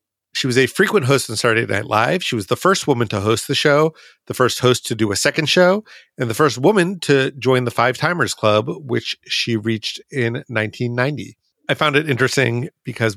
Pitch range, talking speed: 115-150 Hz, 210 wpm